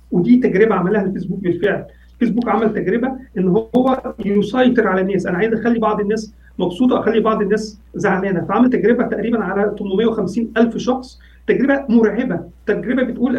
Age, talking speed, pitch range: 40-59, 150 wpm, 210-250 Hz